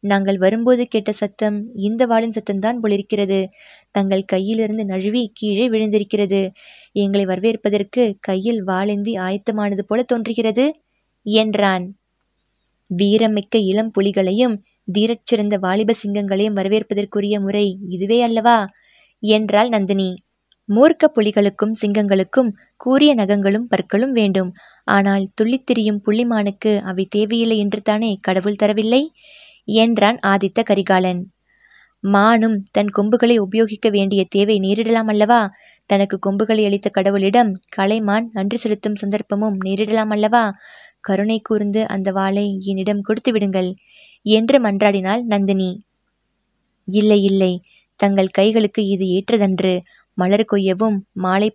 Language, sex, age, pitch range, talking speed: Tamil, female, 20-39, 195-225 Hz, 100 wpm